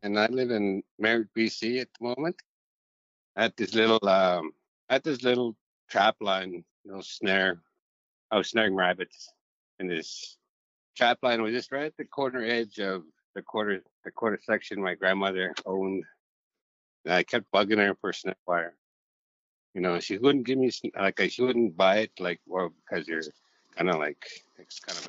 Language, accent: English, American